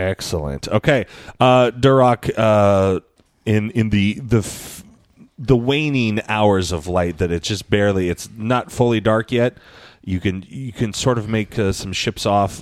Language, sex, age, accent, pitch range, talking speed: English, male, 30-49, American, 85-110 Hz, 165 wpm